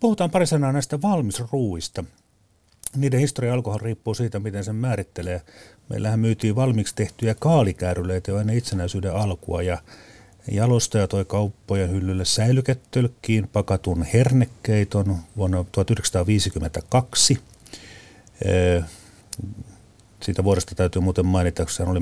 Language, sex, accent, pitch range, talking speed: Finnish, male, native, 90-120 Hz, 105 wpm